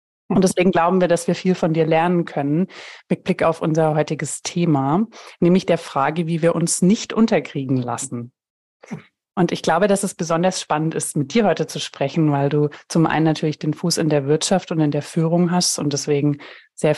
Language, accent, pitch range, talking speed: German, German, 150-180 Hz, 200 wpm